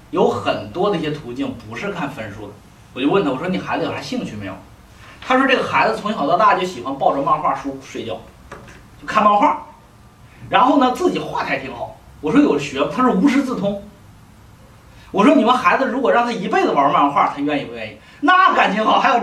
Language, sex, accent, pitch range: Chinese, male, native, 155-255 Hz